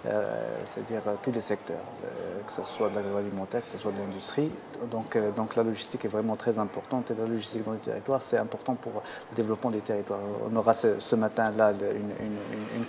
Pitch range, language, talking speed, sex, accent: 105-125 Hz, French, 230 wpm, male, French